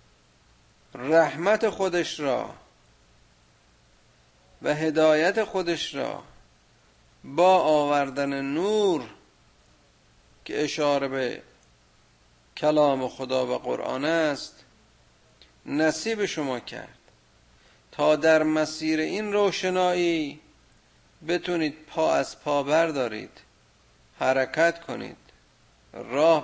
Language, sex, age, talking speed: Persian, male, 50-69, 75 wpm